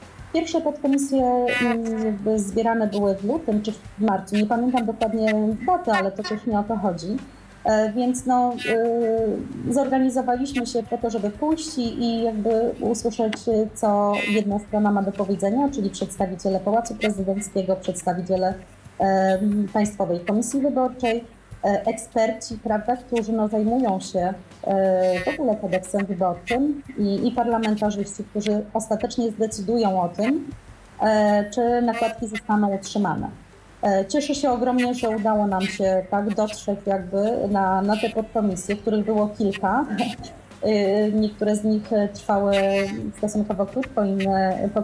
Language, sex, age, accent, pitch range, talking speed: Polish, female, 30-49, native, 200-235 Hz, 120 wpm